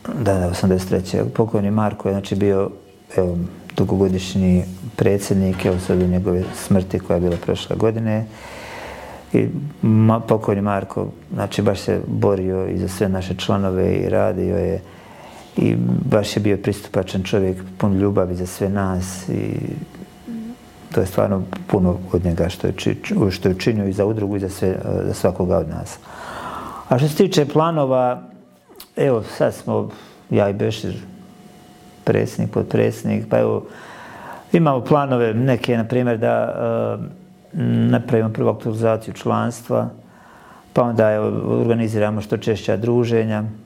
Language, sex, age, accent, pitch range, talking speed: Croatian, male, 40-59, native, 95-115 Hz, 135 wpm